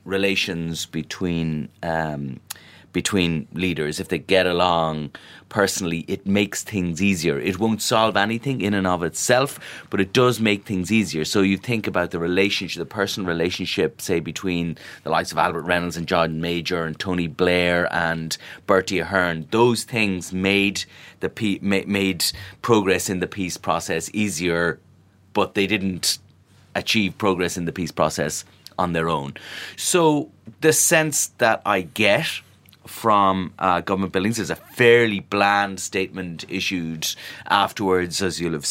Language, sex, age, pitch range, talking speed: English, male, 30-49, 90-115 Hz, 150 wpm